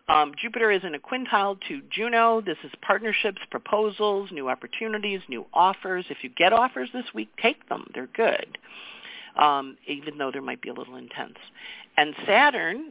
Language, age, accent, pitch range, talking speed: English, 50-69, American, 140-215 Hz, 170 wpm